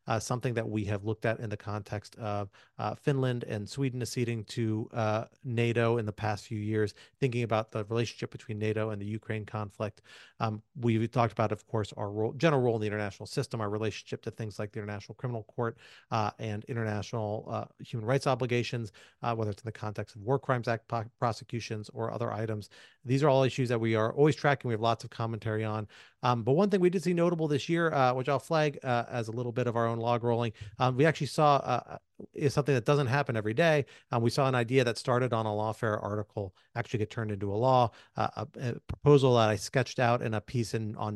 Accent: American